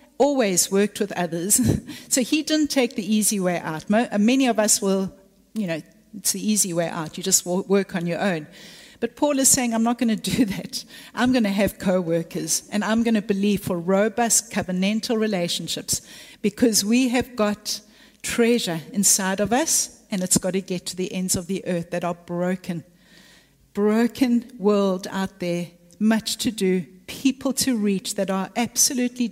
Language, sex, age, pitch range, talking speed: English, female, 60-79, 185-230 Hz, 180 wpm